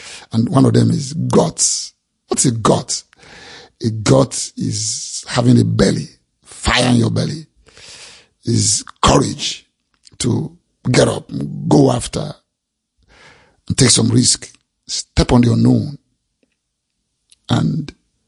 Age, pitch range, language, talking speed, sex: 50-69, 115-135 Hz, English, 120 wpm, male